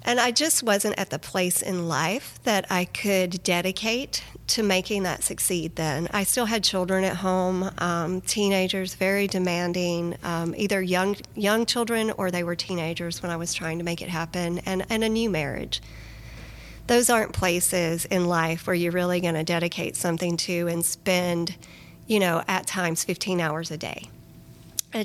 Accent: American